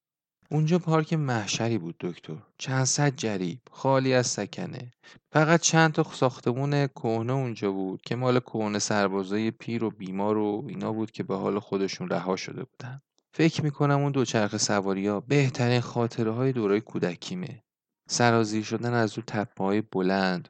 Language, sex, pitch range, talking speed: Persian, male, 100-130 Hz, 145 wpm